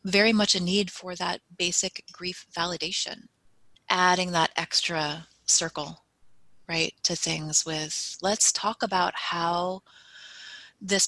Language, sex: English, female